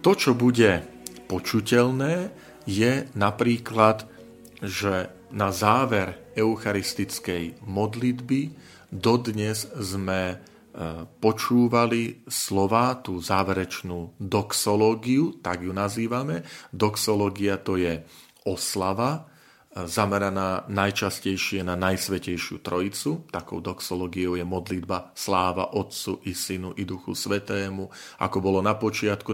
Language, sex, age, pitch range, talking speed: Slovak, male, 40-59, 95-115 Hz, 90 wpm